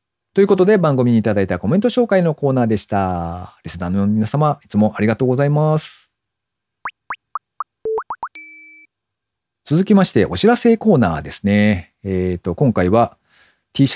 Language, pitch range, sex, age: Japanese, 90-145 Hz, male, 40-59